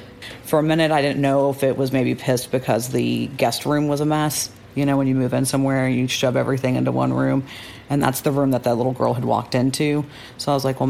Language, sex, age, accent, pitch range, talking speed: English, female, 40-59, American, 125-150 Hz, 260 wpm